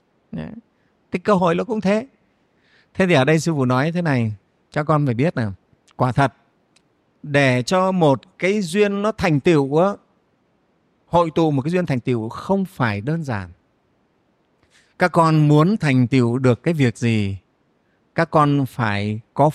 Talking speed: 165 wpm